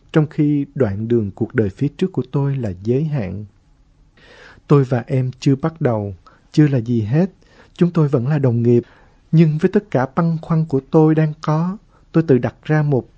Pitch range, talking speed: 115-150 Hz, 200 wpm